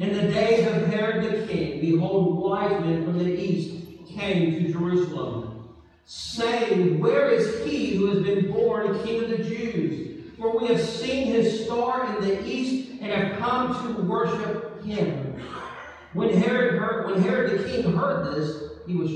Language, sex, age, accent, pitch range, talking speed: English, male, 50-69, American, 155-215 Hz, 170 wpm